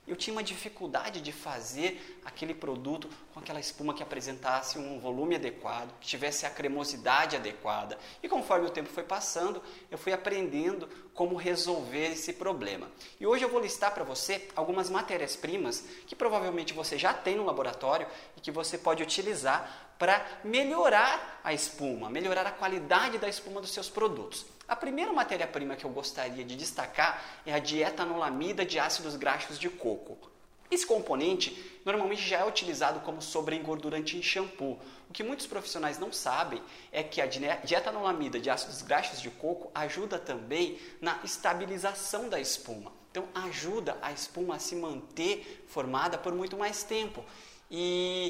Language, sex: Portuguese, male